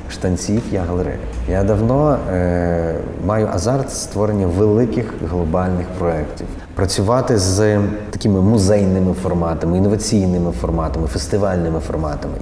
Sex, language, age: male, Ukrainian, 30-49